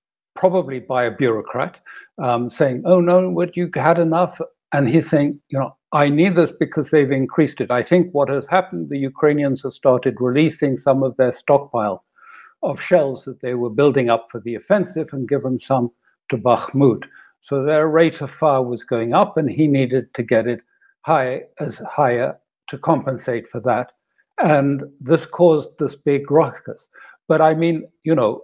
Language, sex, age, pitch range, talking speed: English, male, 60-79, 135-170 Hz, 180 wpm